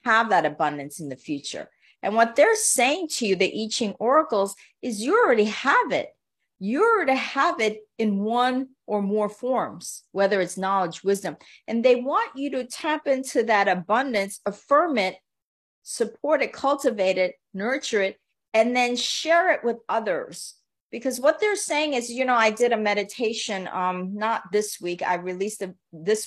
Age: 40-59